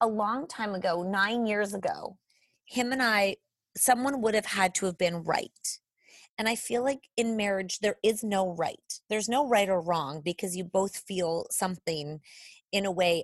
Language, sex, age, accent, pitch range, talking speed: English, female, 30-49, American, 185-235 Hz, 185 wpm